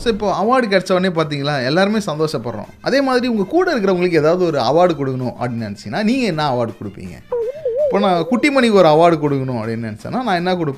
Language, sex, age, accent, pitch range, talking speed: Tamil, male, 30-49, native, 140-215 Hz, 160 wpm